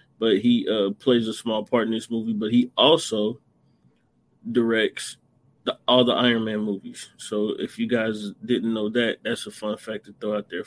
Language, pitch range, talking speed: English, 115-135 Hz, 195 wpm